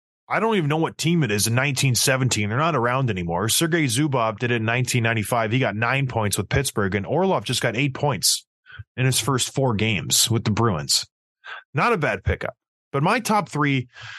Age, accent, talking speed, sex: 20-39, American, 205 wpm, male